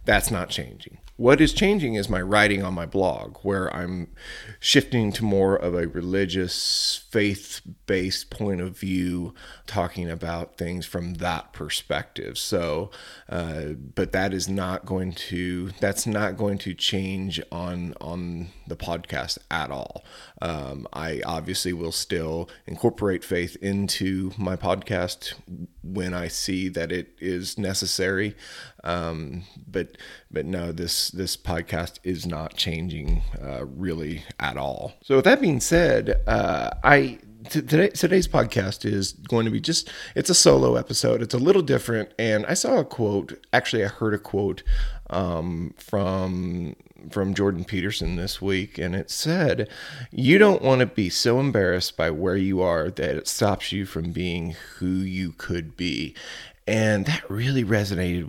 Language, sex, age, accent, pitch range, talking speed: English, male, 30-49, American, 85-100 Hz, 150 wpm